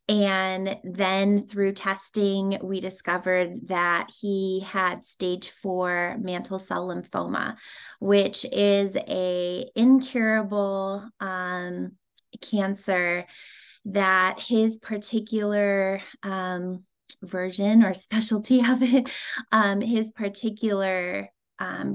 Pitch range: 185-220 Hz